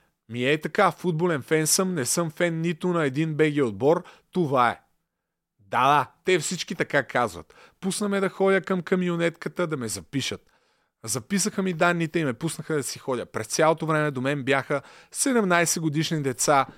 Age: 30-49